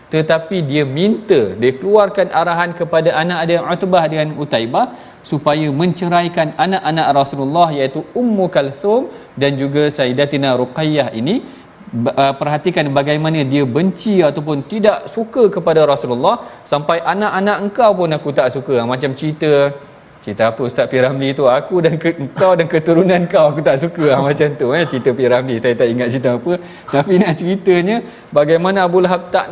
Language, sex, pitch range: Malayalam, male, 145-185 Hz